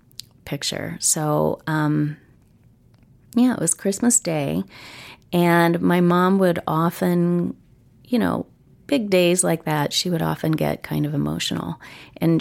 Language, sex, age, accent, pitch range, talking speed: English, female, 30-49, American, 140-185 Hz, 130 wpm